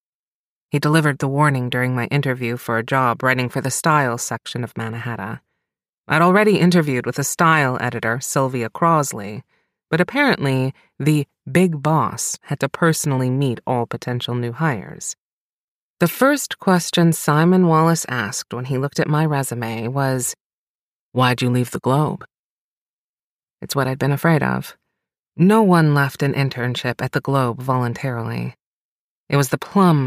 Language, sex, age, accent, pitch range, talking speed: English, female, 30-49, American, 125-155 Hz, 150 wpm